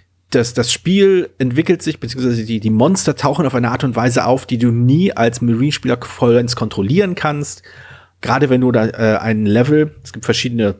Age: 40-59